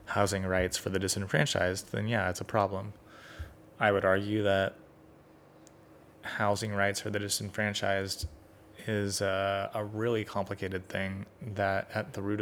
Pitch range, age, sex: 95-105 Hz, 20-39, male